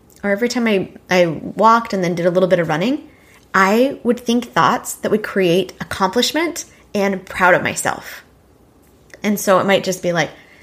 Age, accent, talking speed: 20-39, American, 185 wpm